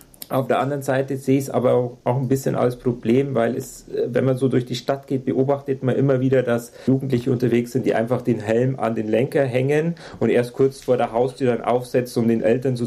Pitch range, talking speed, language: 110-130 Hz, 235 wpm, German